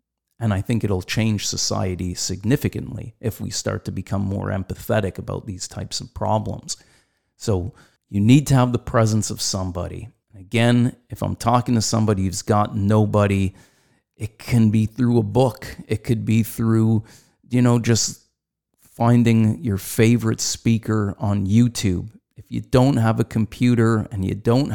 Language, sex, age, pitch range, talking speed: English, male, 30-49, 105-120 Hz, 160 wpm